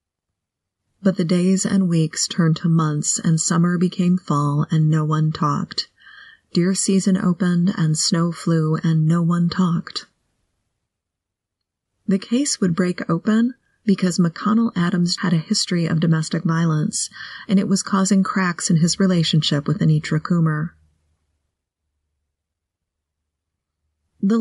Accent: American